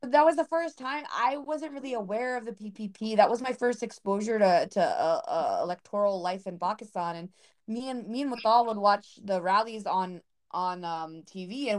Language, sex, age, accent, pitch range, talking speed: English, female, 20-39, American, 190-240 Hz, 205 wpm